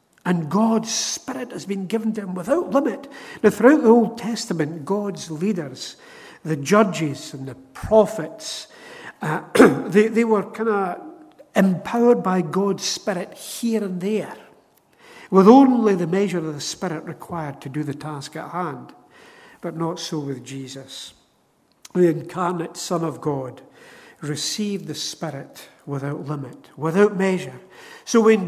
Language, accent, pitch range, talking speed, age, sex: English, British, 155-215 Hz, 145 wpm, 60-79, male